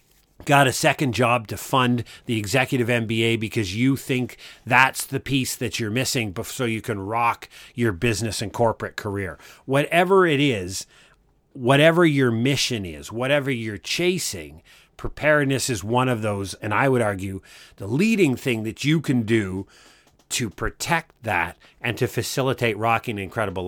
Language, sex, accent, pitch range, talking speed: English, male, American, 115-150 Hz, 155 wpm